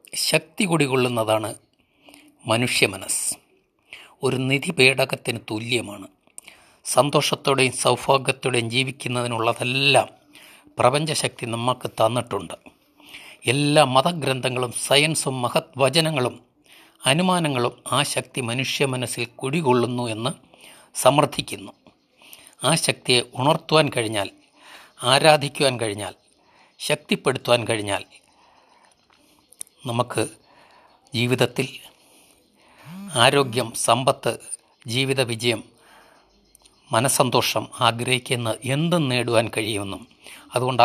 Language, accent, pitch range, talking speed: Malayalam, native, 120-150 Hz, 70 wpm